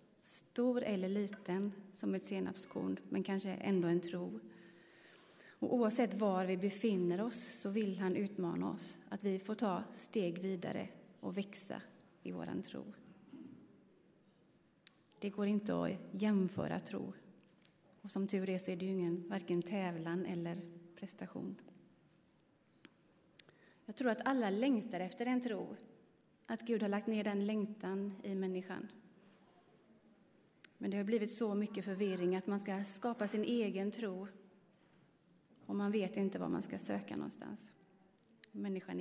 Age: 30-49